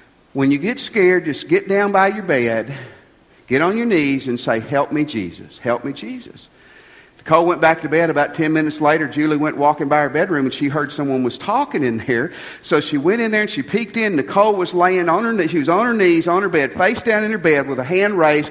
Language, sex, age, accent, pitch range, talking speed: English, male, 50-69, American, 130-210 Hz, 250 wpm